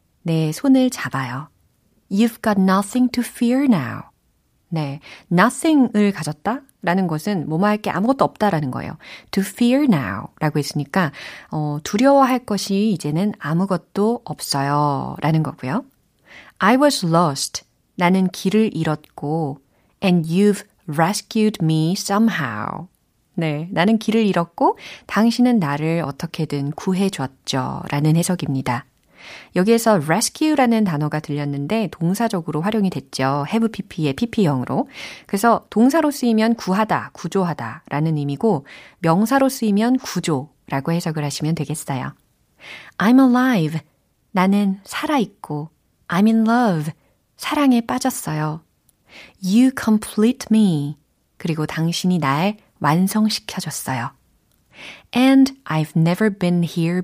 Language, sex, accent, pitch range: Korean, female, native, 150-220 Hz